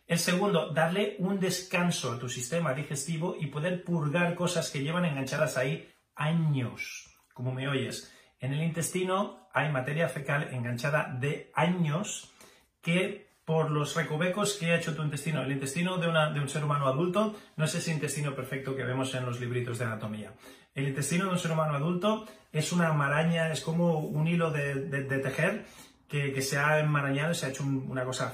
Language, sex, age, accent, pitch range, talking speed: Spanish, male, 30-49, Spanish, 130-170 Hz, 185 wpm